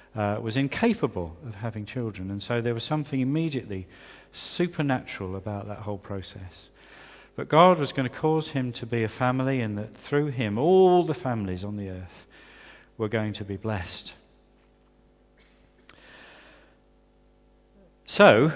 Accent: British